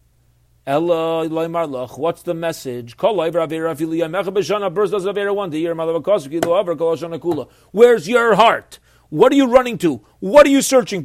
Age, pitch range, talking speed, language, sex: 40-59, 160-225 Hz, 80 wpm, English, male